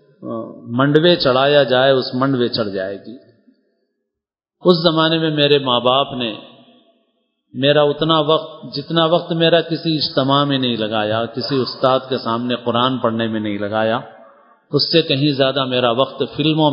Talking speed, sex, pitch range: 150 wpm, male, 130-165 Hz